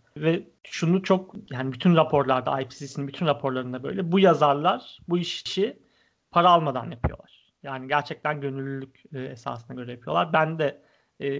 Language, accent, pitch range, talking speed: Turkish, native, 130-170 Hz, 135 wpm